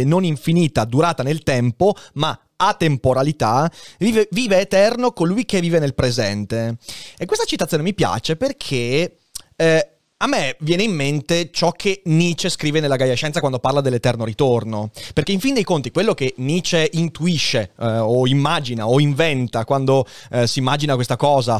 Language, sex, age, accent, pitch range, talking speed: Italian, male, 30-49, native, 125-170 Hz, 165 wpm